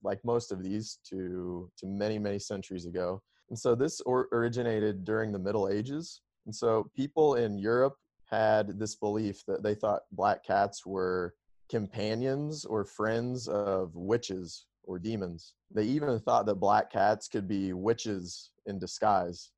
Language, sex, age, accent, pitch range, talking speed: English, male, 30-49, American, 95-110 Hz, 155 wpm